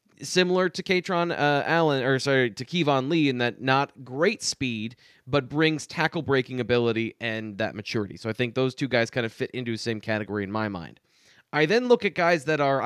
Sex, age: male, 20-39